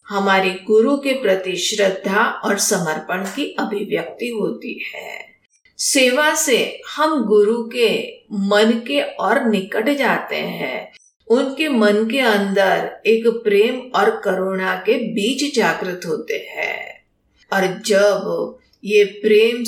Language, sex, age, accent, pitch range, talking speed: Hindi, female, 50-69, native, 190-255 Hz, 120 wpm